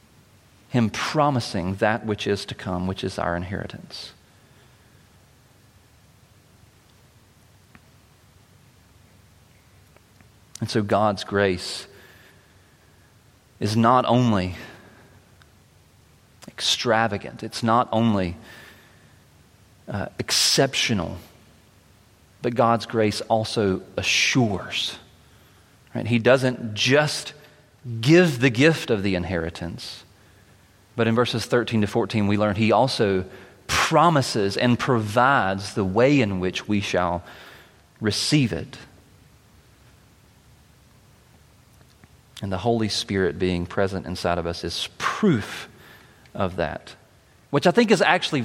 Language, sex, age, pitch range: English, male, 40-59, 95-120 Hz